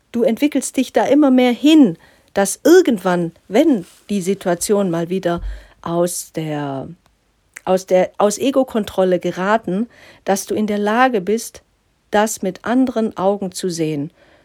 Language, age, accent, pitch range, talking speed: German, 50-69, German, 180-220 Hz, 140 wpm